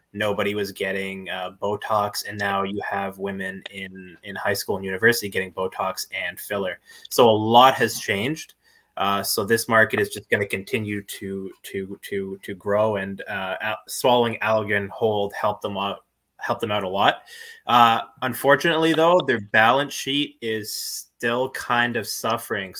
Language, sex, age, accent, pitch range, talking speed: English, male, 20-39, American, 100-120 Hz, 165 wpm